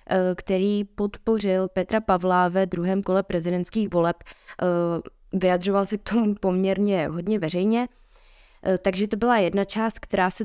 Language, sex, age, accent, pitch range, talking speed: Czech, female, 20-39, native, 185-205 Hz, 130 wpm